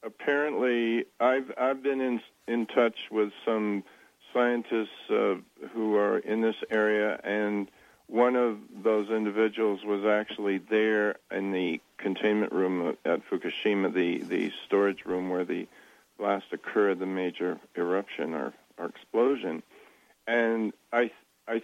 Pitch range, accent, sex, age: 105-115 Hz, American, male, 50-69